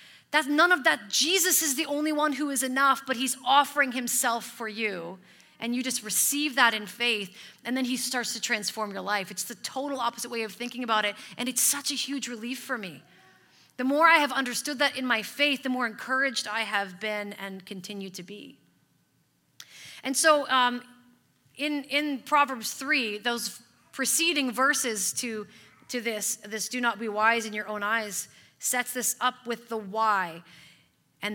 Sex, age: female, 30-49